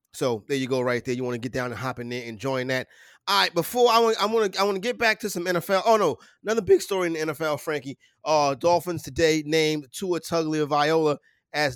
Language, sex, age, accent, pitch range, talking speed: English, male, 30-49, American, 140-170 Hz, 260 wpm